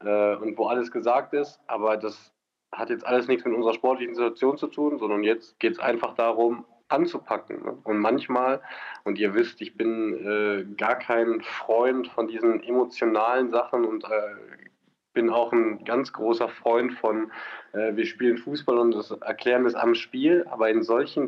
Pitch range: 110-150 Hz